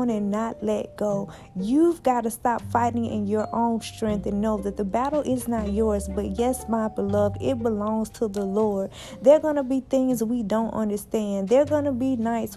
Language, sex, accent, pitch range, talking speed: English, female, American, 210-260 Hz, 215 wpm